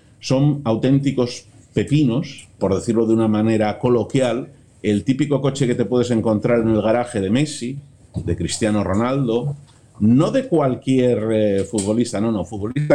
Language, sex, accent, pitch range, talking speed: Spanish, male, Spanish, 100-130 Hz, 150 wpm